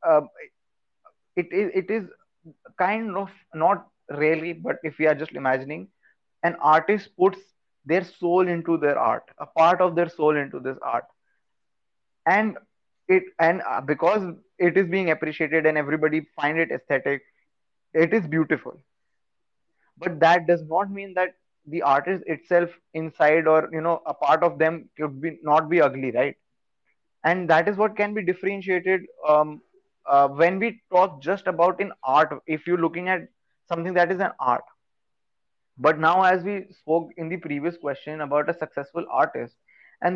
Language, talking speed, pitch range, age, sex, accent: English, 165 wpm, 155-190 Hz, 20-39, male, Indian